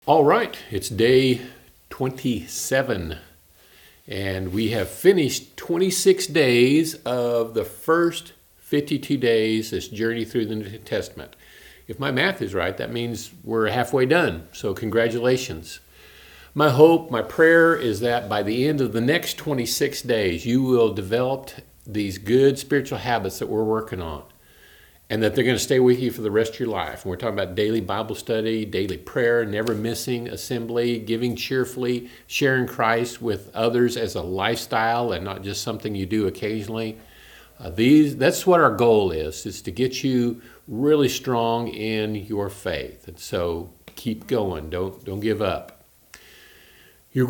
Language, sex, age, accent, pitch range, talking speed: English, male, 50-69, American, 110-140 Hz, 160 wpm